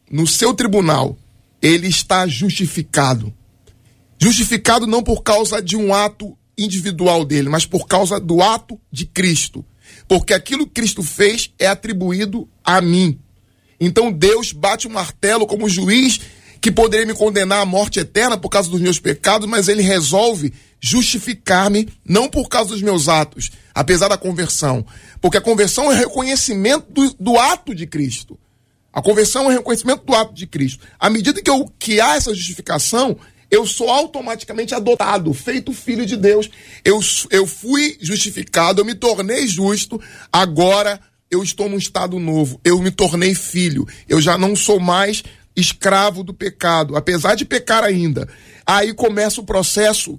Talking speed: 160 wpm